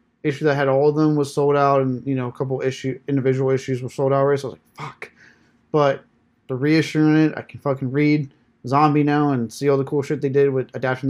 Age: 20-39